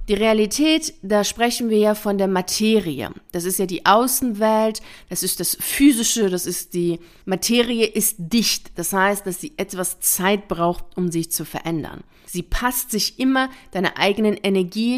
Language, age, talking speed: German, 40-59, 170 wpm